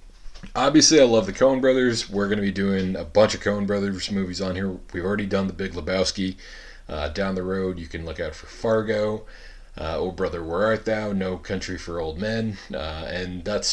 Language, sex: English, male